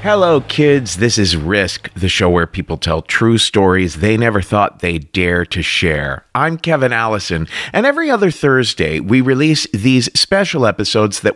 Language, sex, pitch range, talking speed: English, male, 85-120 Hz, 170 wpm